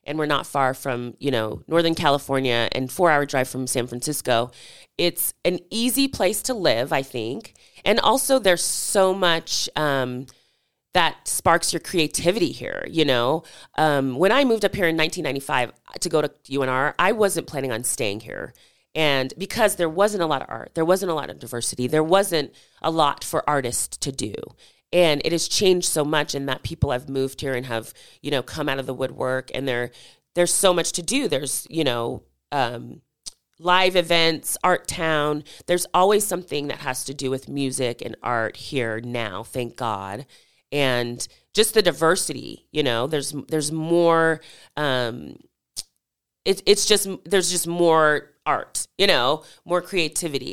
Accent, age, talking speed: American, 30-49, 175 wpm